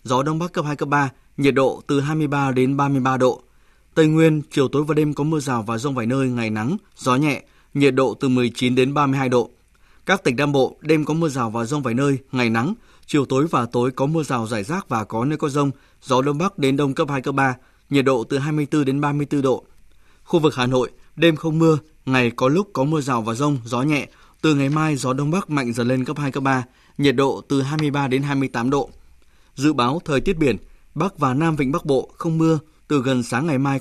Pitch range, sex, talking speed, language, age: 130-155 Hz, male, 245 wpm, Vietnamese, 20-39